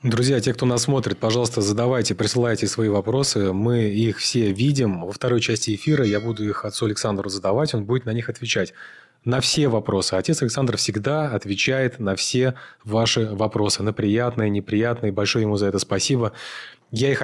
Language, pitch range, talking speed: Russian, 105-125 Hz, 175 wpm